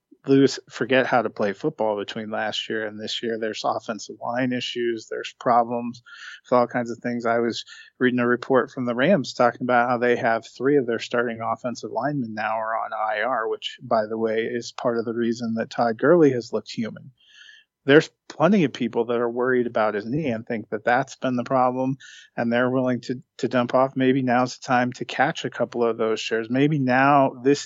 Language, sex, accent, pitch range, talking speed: English, male, American, 115-125 Hz, 215 wpm